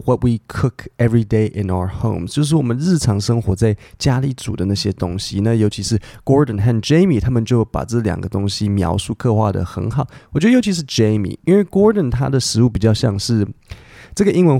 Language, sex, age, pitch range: Chinese, male, 20-39, 105-125 Hz